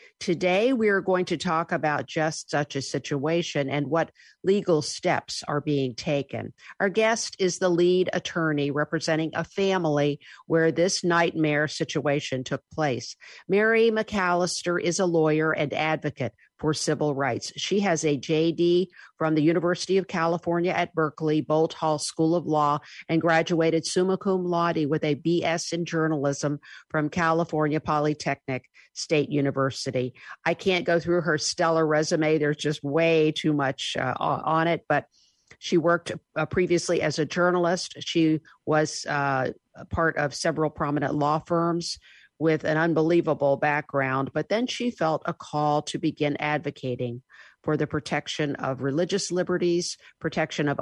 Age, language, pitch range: 50-69, English, 145-170 Hz